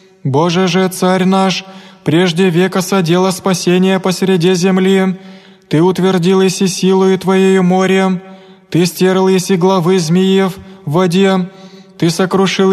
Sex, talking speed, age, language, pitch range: male, 125 wpm, 20-39, Greek, 185-195 Hz